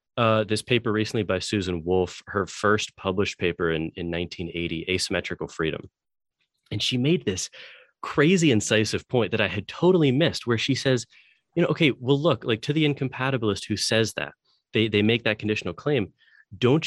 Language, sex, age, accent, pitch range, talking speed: English, male, 30-49, American, 105-145 Hz, 180 wpm